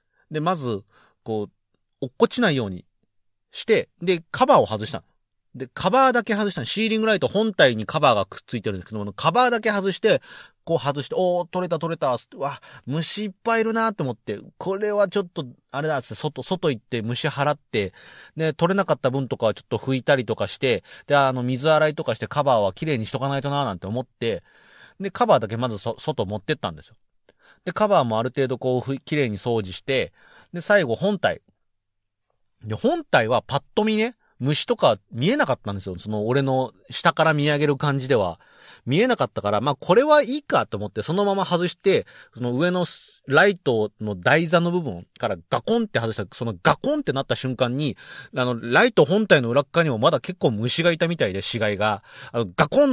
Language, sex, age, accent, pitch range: Japanese, male, 40-59, native, 115-180 Hz